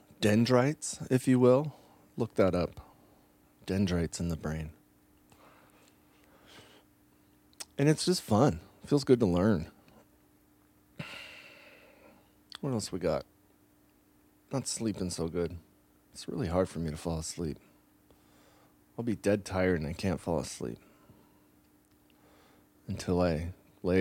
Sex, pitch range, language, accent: male, 65-100 Hz, English, American